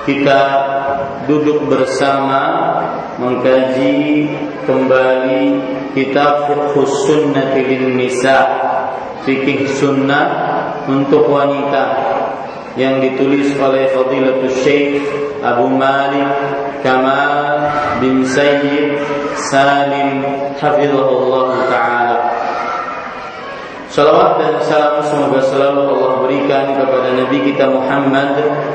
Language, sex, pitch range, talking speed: Malay, male, 130-145 Hz, 75 wpm